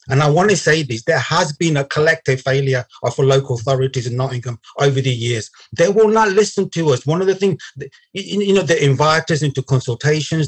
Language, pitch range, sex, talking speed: English, 130-155 Hz, male, 220 wpm